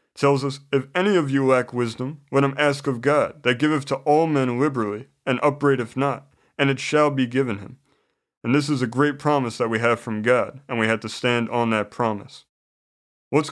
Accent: American